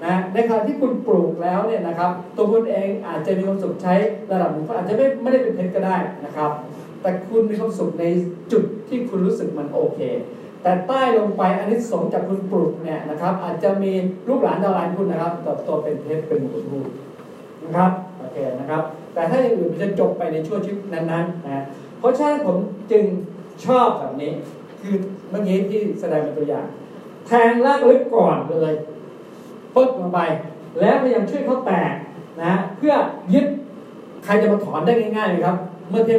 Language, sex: Thai, male